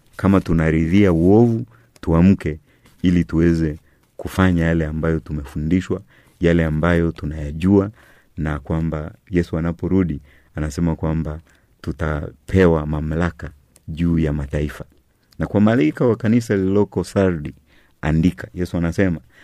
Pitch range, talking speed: 80-100 Hz, 105 wpm